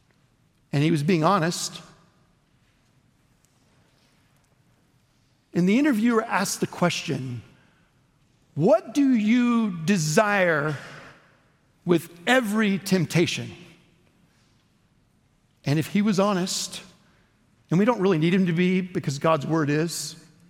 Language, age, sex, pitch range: English, 60-79, male, 140-195 Hz